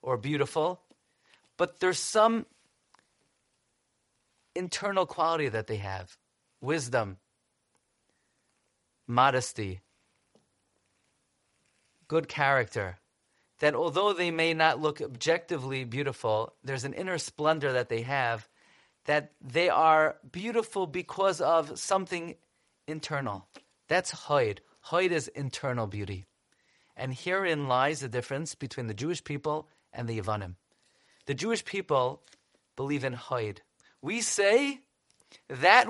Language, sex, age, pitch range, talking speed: English, male, 40-59, 125-185 Hz, 105 wpm